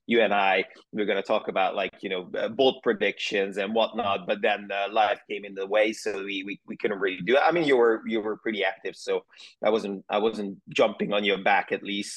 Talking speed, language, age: 255 wpm, English, 30-49